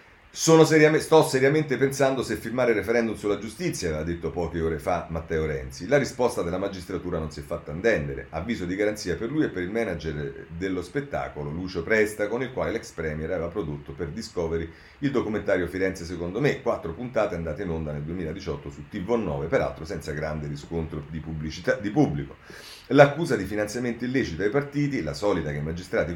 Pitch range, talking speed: 80-115 Hz, 185 wpm